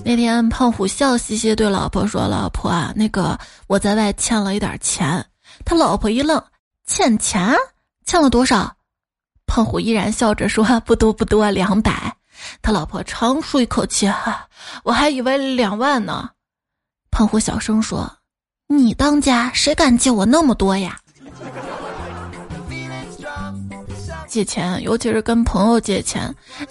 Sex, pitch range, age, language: female, 210-255 Hz, 20-39, Chinese